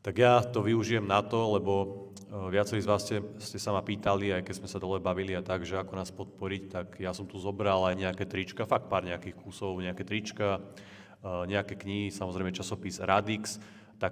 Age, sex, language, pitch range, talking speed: 30-49, male, Slovak, 90-105 Hz, 210 wpm